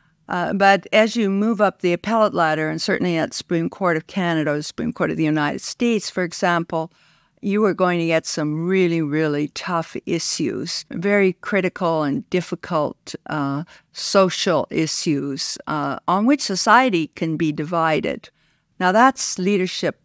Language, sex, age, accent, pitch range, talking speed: English, female, 60-79, American, 165-200 Hz, 160 wpm